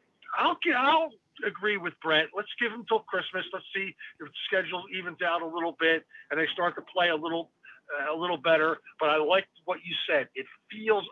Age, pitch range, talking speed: 50-69, 160-210 Hz, 215 wpm